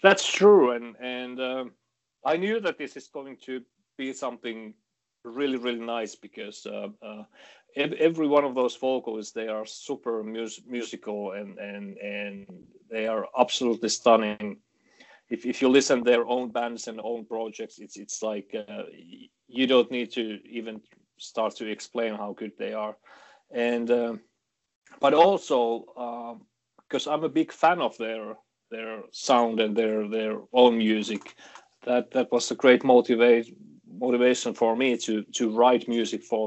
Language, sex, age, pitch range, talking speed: English, male, 40-59, 110-125 Hz, 160 wpm